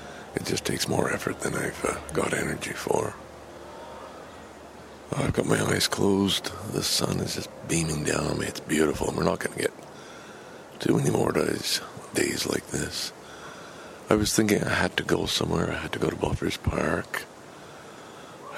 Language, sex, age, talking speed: English, male, 60-79, 175 wpm